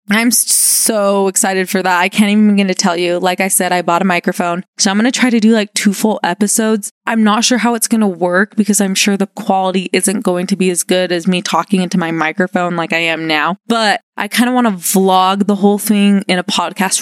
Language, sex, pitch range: English, female, 185-220 Hz